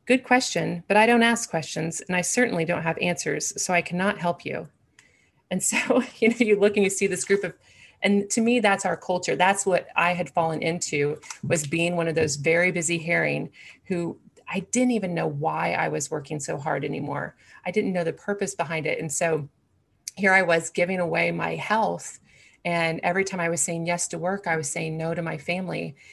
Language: English